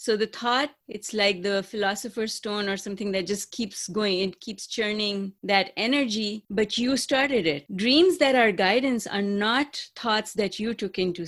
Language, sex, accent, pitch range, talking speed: English, female, Indian, 200-245 Hz, 180 wpm